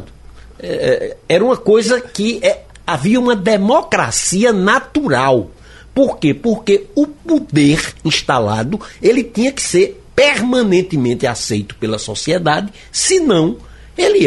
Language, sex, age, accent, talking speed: Portuguese, male, 60-79, Brazilian, 95 wpm